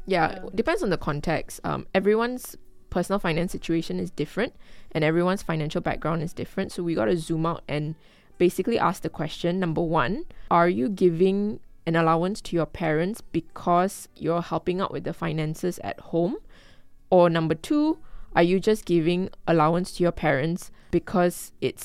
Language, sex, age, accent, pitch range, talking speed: English, female, 20-39, Malaysian, 160-180 Hz, 170 wpm